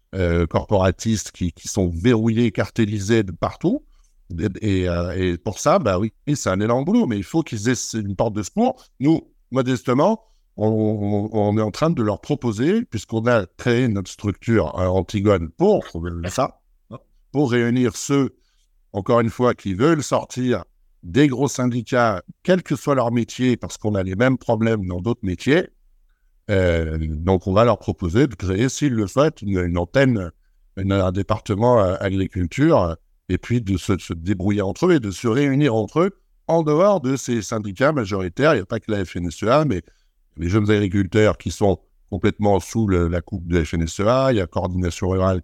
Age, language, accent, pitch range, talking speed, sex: 60-79, French, French, 95-125 Hz, 190 wpm, male